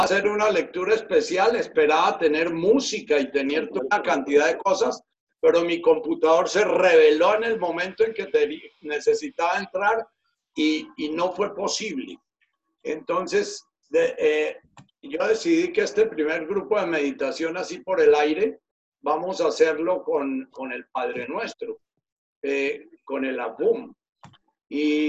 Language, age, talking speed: Spanish, 60-79, 145 wpm